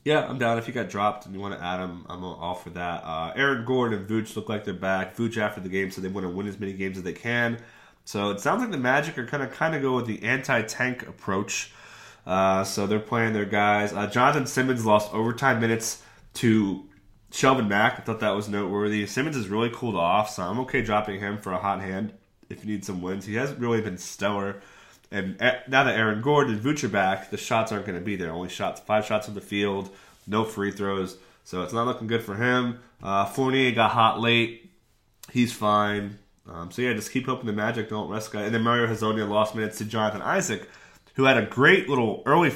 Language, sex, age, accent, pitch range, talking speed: English, male, 30-49, American, 100-125 Hz, 235 wpm